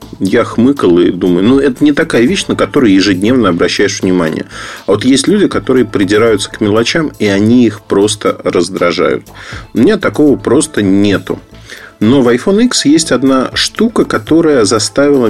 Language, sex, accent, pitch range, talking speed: Russian, male, native, 100-135 Hz, 160 wpm